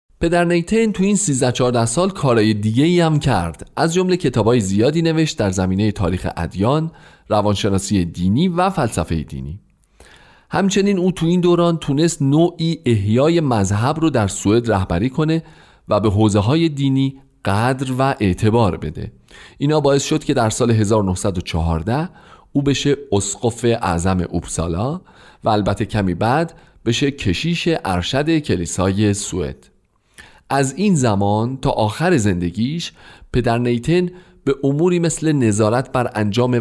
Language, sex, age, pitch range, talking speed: Persian, male, 40-59, 100-150 Hz, 135 wpm